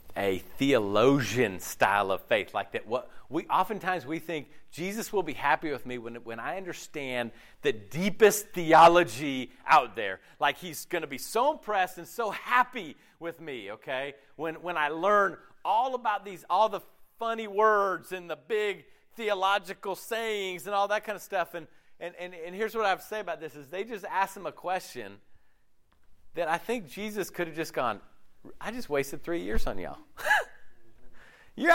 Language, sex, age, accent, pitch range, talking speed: English, male, 40-59, American, 150-210 Hz, 185 wpm